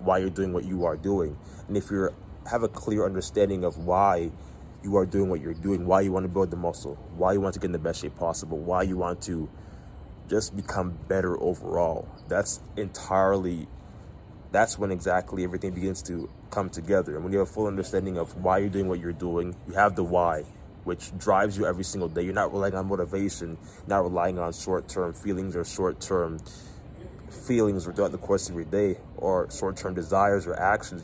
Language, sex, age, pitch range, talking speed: English, male, 20-39, 90-100 Hz, 205 wpm